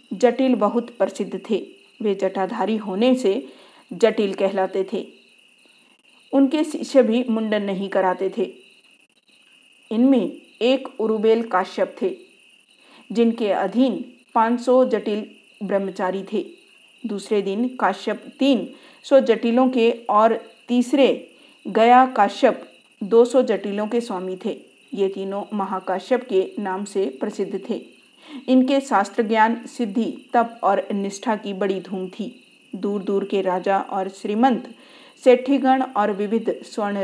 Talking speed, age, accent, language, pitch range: 115 wpm, 50-69, native, Hindi, 195-250 Hz